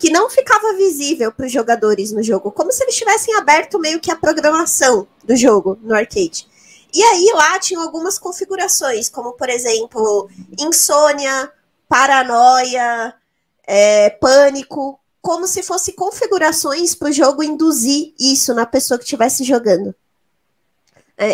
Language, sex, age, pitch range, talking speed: Portuguese, female, 20-39, 230-310 Hz, 140 wpm